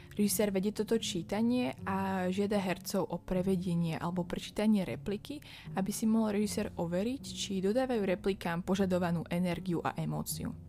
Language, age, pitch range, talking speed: Slovak, 20-39, 170-200 Hz, 135 wpm